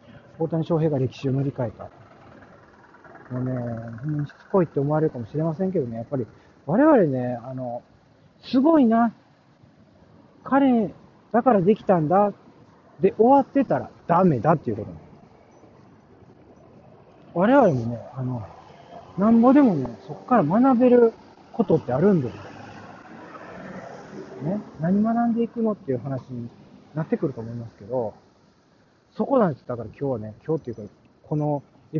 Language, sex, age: Japanese, male, 40-59